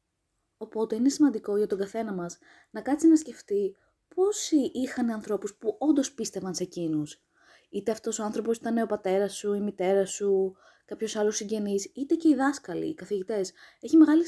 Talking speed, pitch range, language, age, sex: 175 wpm, 185-255 Hz, Greek, 20-39, female